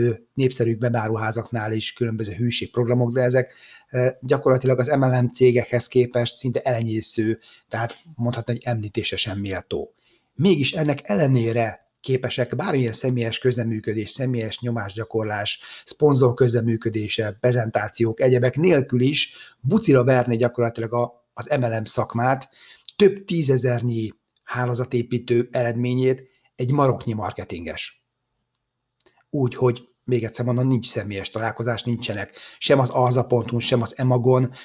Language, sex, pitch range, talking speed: Hungarian, male, 115-130 Hz, 105 wpm